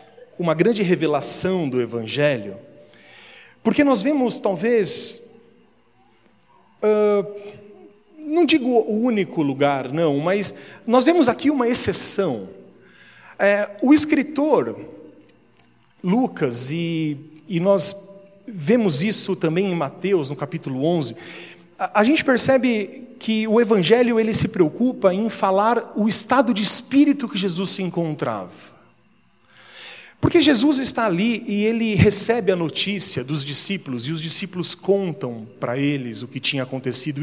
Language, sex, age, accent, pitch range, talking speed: Portuguese, male, 40-59, Brazilian, 160-235 Hz, 120 wpm